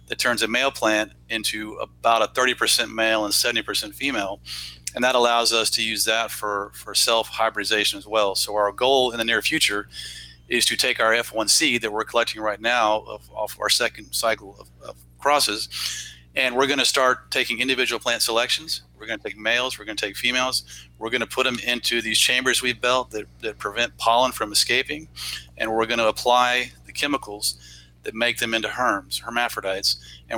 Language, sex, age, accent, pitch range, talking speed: English, male, 40-59, American, 95-120 Hz, 190 wpm